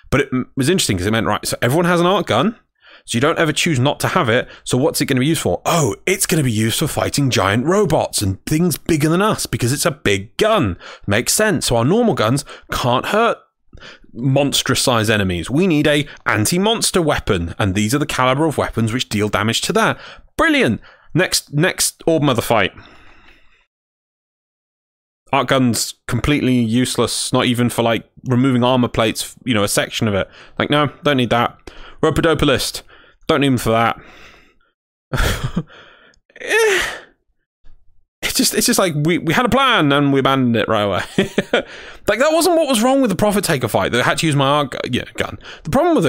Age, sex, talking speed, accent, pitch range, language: 30-49, male, 200 wpm, British, 115-165 Hz, English